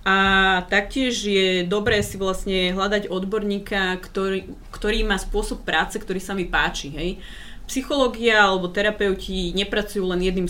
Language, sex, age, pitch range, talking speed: Slovak, female, 30-49, 170-210 Hz, 130 wpm